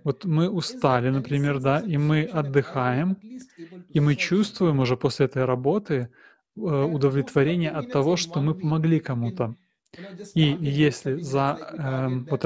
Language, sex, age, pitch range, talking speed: Russian, male, 20-39, 135-165 Hz, 130 wpm